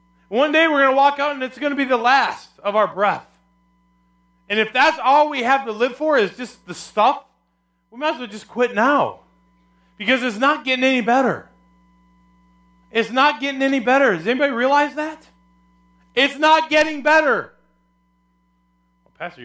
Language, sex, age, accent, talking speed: English, male, 30-49, American, 175 wpm